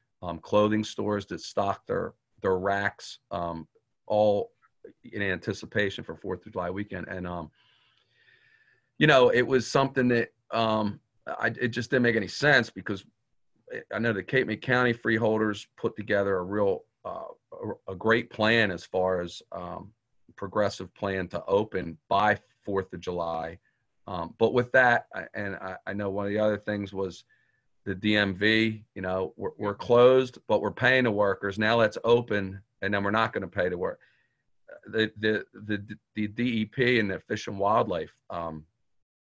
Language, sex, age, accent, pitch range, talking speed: English, male, 40-59, American, 95-115 Hz, 170 wpm